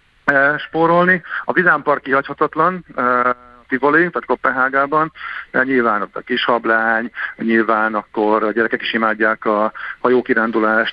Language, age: Hungarian, 50-69